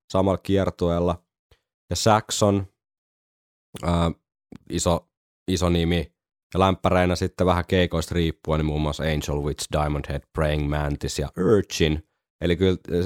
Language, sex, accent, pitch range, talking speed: Finnish, male, native, 75-95 Hz, 125 wpm